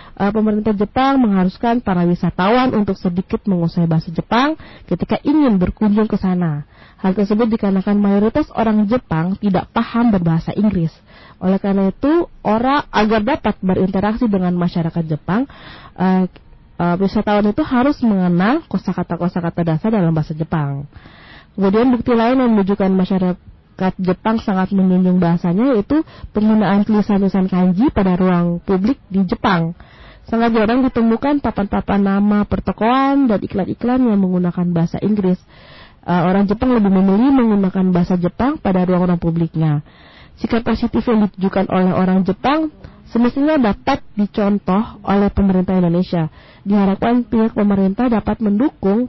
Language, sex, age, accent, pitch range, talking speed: Indonesian, female, 20-39, native, 180-225 Hz, 125 wpm